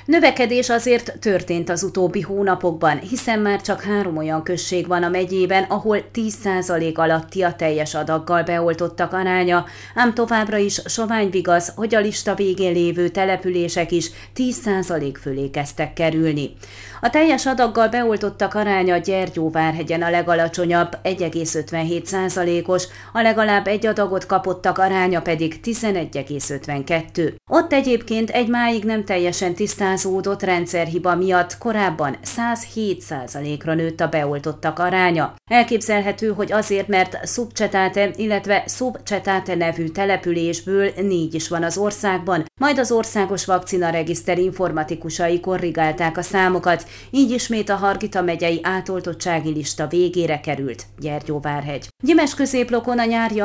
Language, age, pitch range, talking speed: Hungarian, 30-49, 165-205 Hz, 120 wpm